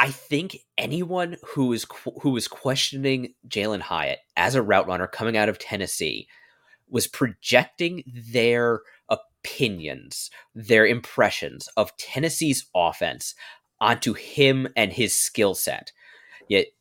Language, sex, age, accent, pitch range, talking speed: English, male, 20-39, American, 105-145 Hz, 120 wpm